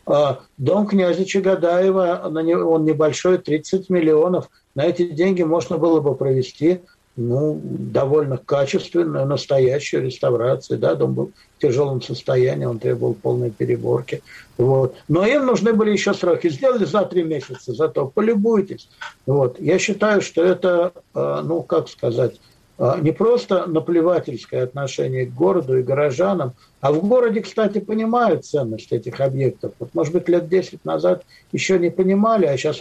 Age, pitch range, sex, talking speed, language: 60-79, 135-185 Hz, male, 135 wpm, Russian